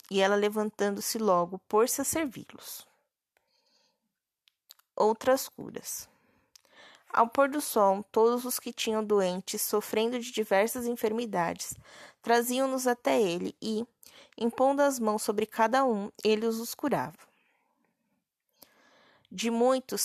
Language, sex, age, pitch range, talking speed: Portuguese, female, 20-39, 205-245 Hz, 110 wpm